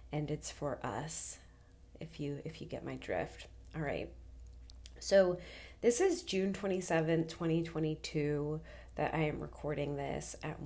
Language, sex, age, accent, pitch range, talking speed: English, female, 20-39, American, 150-170 Hz, 140 wpm